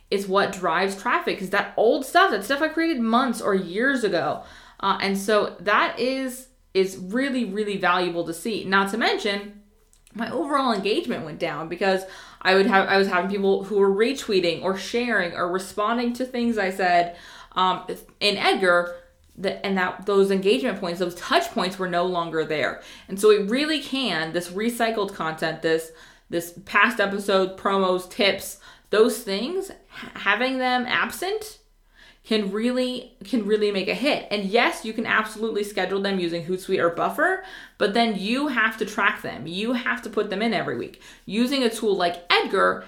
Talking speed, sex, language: 180 wpm, female, English